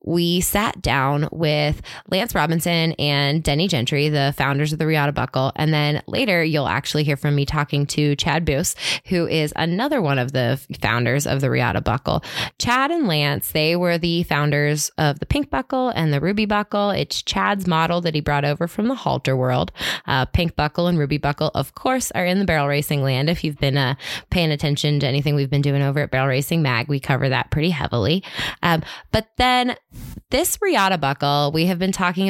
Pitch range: 145-180 Hz